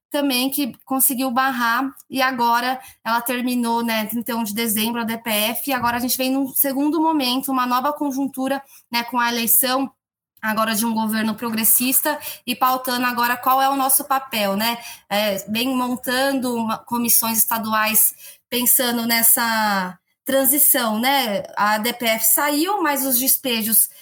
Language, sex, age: Portuguese, female, 20-39